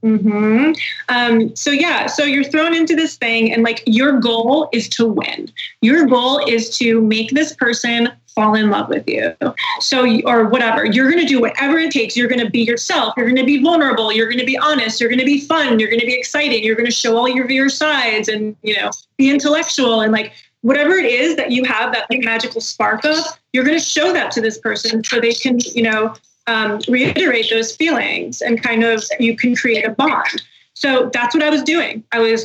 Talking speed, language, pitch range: 225 wpm, English, 230-290 Hz